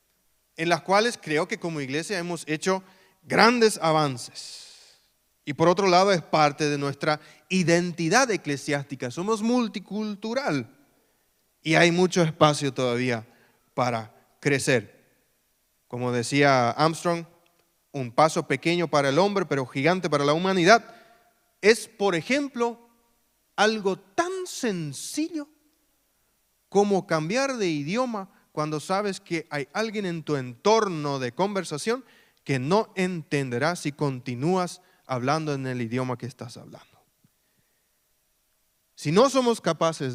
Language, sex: Spanish, male